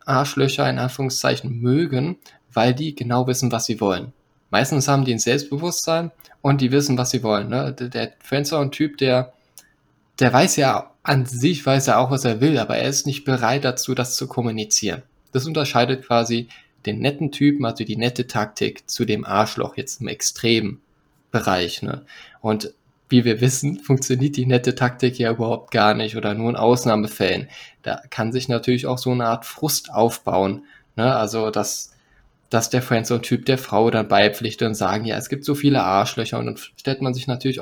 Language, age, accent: German, 10-29, German